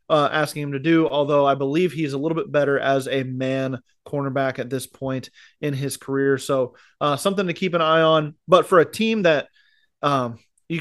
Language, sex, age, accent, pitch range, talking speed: English, male, 20-39, American, 135-165 Hz, 210 wpm